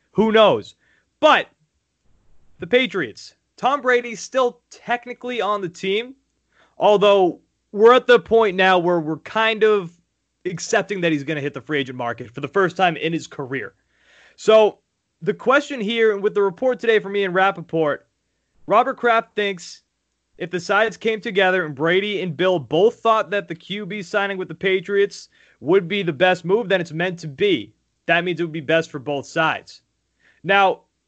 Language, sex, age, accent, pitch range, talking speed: English, male, 30-49, American, 155-210 Hz, 180 wpm